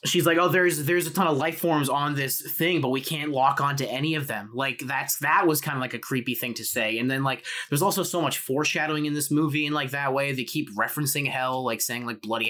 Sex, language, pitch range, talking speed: male, English, 125-155 Hz, 270 wpm